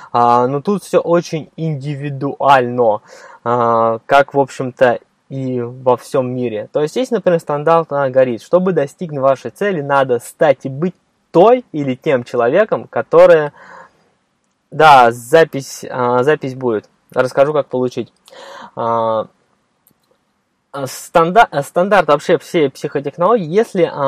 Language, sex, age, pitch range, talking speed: Russian, male, 20-39, 130-180 Hz, 125 wpm